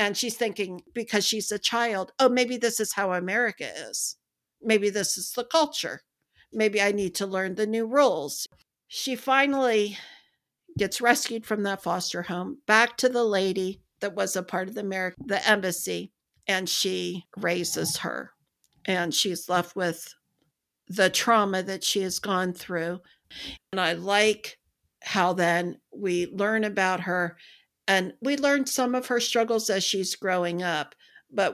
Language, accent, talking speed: English, American, 160 wpm